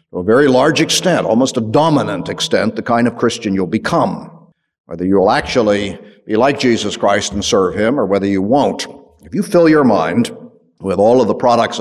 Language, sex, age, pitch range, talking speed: English, male, 50-69, 100-165 Hz, 200 wpm